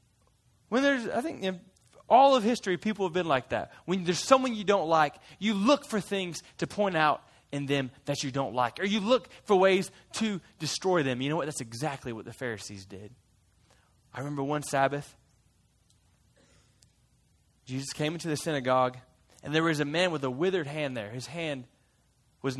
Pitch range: 130-195 Hz